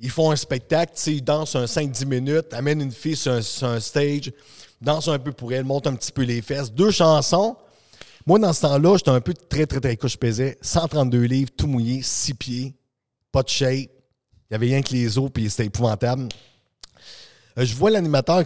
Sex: male